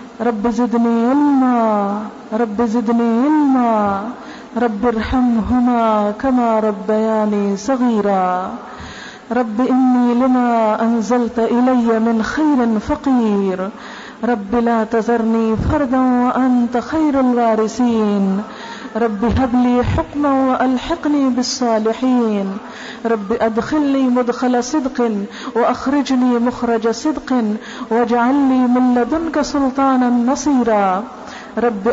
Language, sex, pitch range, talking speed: Urdu, female, 220-250 Hz, 85 wpm